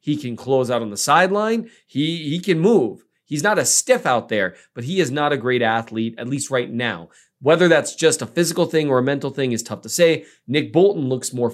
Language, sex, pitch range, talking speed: English, male, 115-150 Hz, 240 wpm